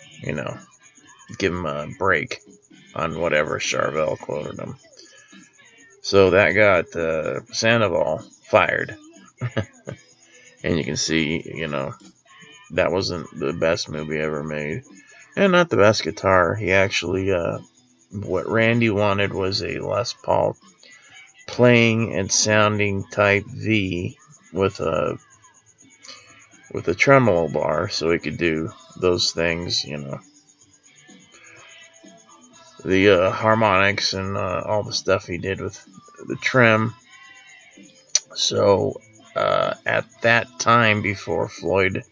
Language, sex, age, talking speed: English, male, 30-49, 120 wpm